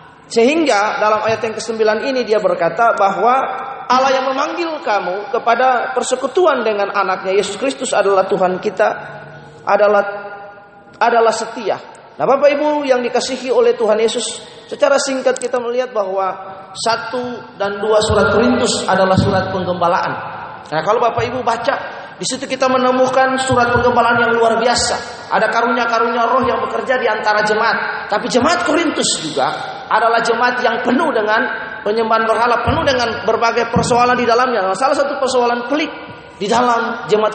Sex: male